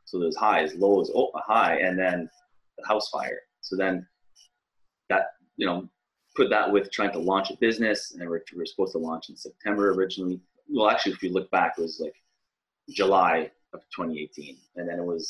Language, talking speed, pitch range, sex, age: English, 195 wpm, 85-125 Hz, male, 20-39